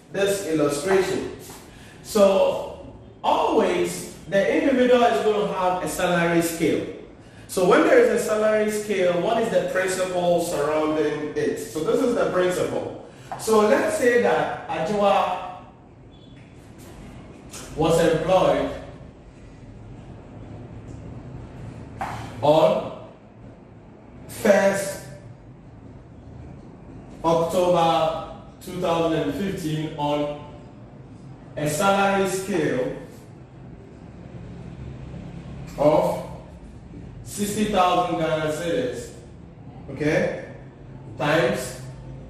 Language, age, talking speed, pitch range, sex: English, 40-59, 70 wpm, 135-185 Hz, male